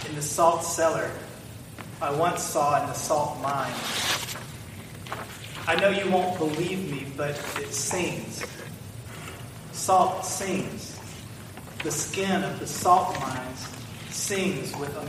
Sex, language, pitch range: male, English, 125-170 Hz